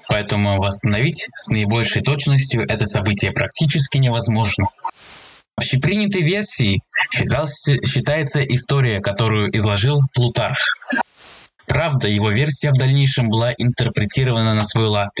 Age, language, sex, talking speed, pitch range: 20-39, Russian, male, 110 wpm, 105-140 Hz